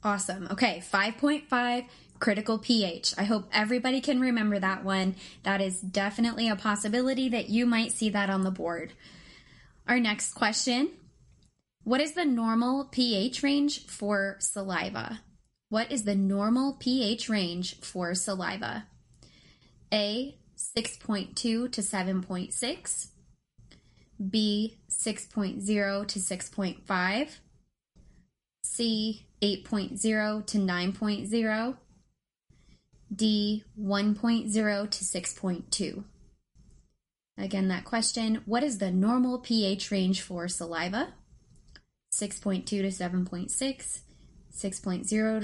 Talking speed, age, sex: 95 wpm, 20-39, female